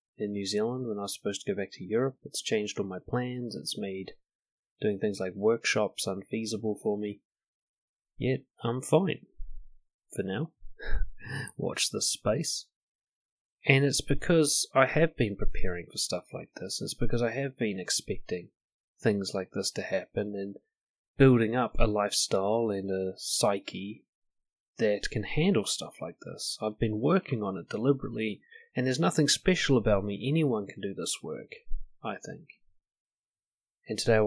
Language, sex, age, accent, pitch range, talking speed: English, male, 30-49, Australian, 100-130 Hz, 160 wpm